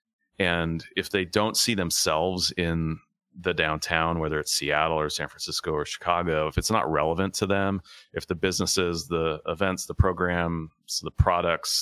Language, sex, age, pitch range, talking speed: English, male, 30-49, 80-95 Hz, 160 wpm